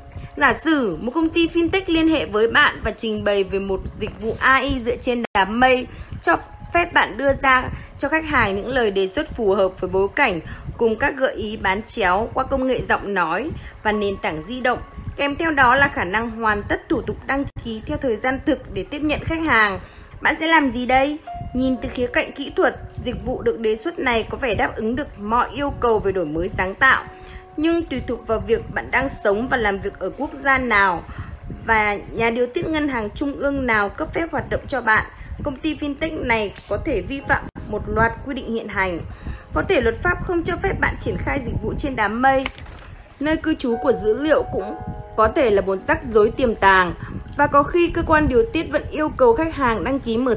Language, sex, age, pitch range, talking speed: Vietnamese, female, 20-39, 215-295 Hz, 230 wpm